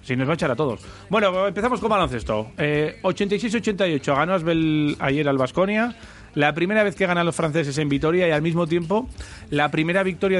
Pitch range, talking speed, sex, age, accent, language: 130-170 Hz, 190 wpm, male, 30-49, Spanish, Spanish